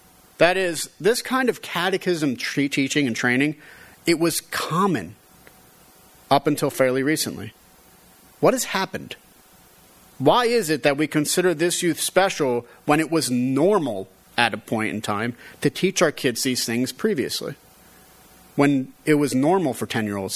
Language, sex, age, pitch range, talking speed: English, male, 40-59, 125-160 Hz, 145 wpm